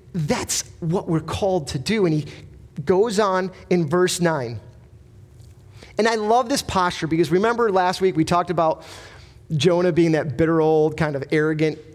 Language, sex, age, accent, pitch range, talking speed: English, male, 30-49, American, 135-195 Hz, 165 wpm